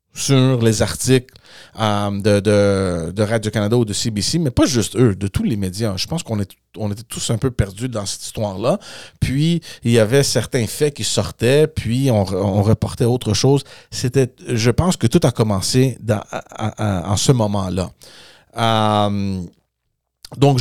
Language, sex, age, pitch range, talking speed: French, male, 40-59, 110-140 Hz, 170 wpm